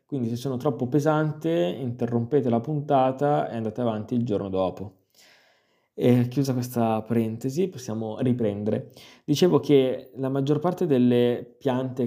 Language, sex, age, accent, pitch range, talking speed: Italian, male, 20-39, native, 120-145 Hz, 130 wpm